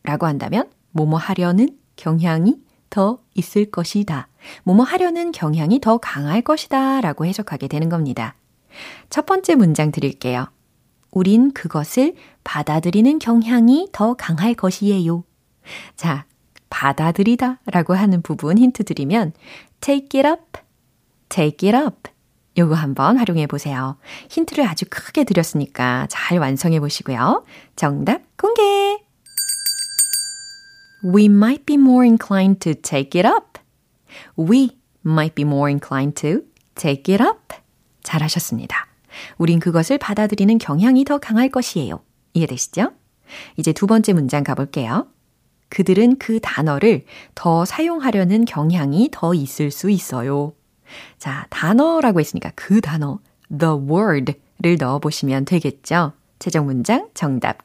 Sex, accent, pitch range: female, native, 155-255 Hz